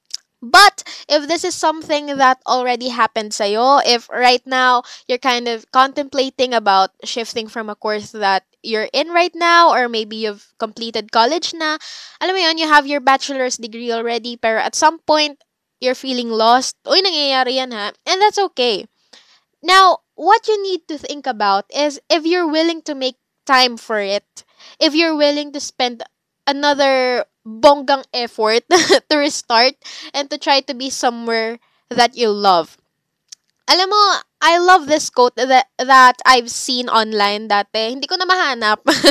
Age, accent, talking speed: 10-29, native, 160 wpm